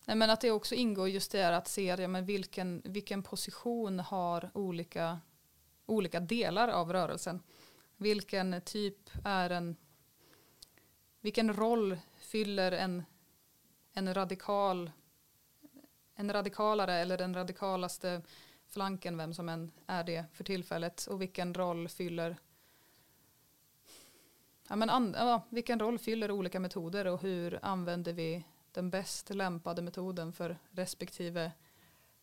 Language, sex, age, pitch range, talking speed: Swedish, female, 20-39, 170-205 Hz, 125 wpm